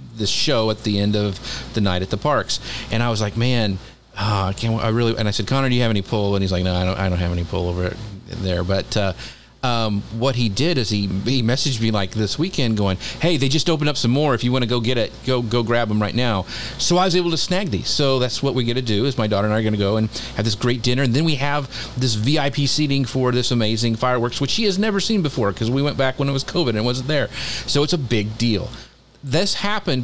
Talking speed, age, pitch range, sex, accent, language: 285 wpm, 40-59, 110-135 Hz, male, American, English